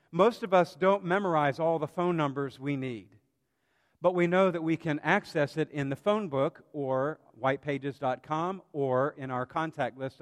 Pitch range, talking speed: 140-180 Hz, 175 wpm